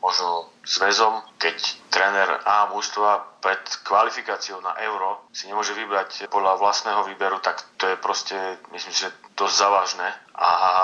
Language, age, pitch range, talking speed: Slovak, 30-49, 95-105 Hz, 140 wpm